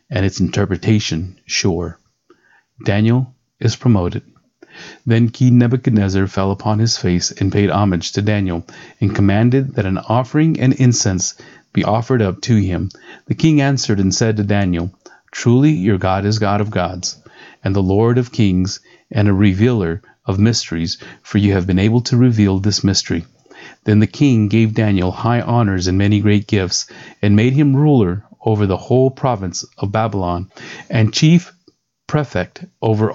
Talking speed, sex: 160 wpm, male